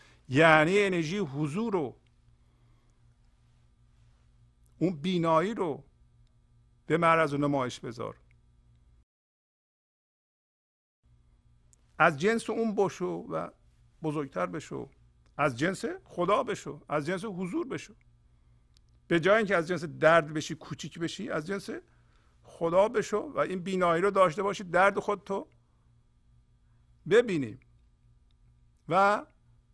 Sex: male